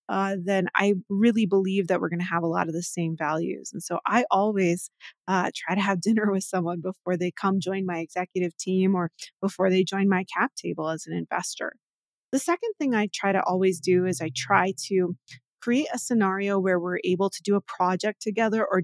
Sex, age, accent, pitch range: female, 20-39, American, 180-215 Hz